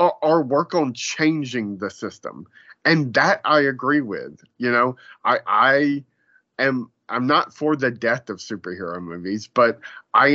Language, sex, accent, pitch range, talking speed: English, male, American, 115-145 Hz, 150 wpm